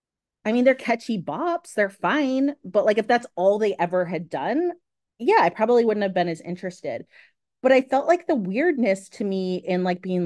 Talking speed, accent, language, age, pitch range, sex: 205 wpm, American, English, 30-49, 185-270 Hz, female